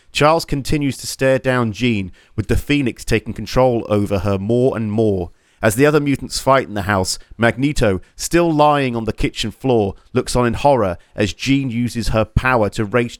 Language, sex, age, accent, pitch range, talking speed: English, male, 40-59, British, 105-130 Hz, 190 wpm